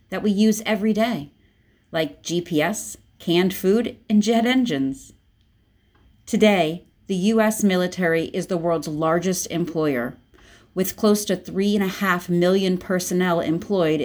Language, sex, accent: English, female, American